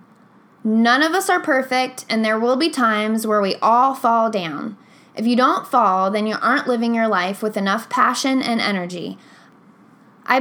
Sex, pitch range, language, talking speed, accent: female, 215-260 Hz, English, 180 wpm, American